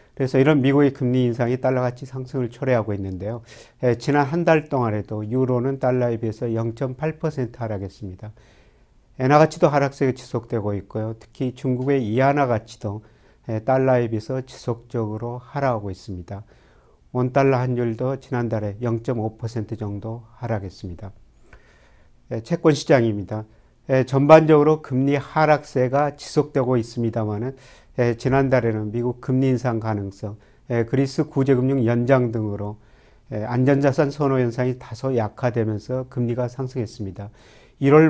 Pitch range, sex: 115-135 Hz, male